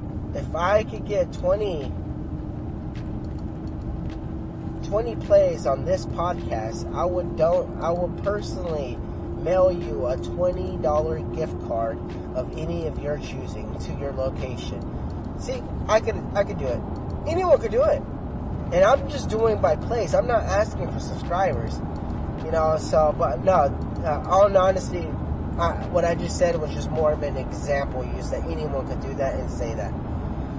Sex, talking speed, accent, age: male, 160 wpm, American, 20-39